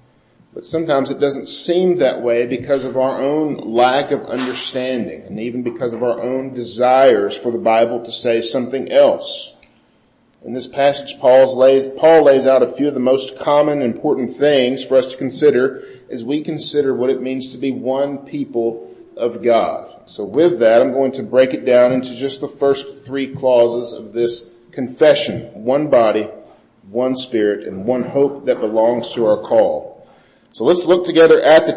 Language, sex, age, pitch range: English, male, 40-59, 125-155 Hz